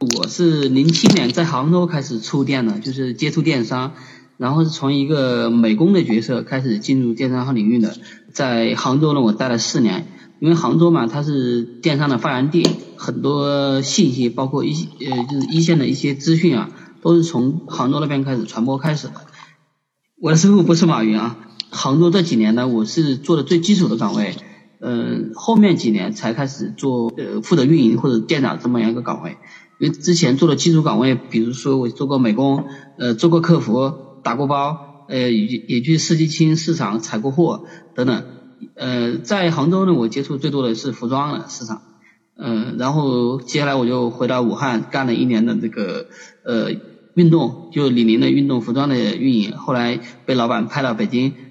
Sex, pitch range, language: male, 120-155 Hz, Chinese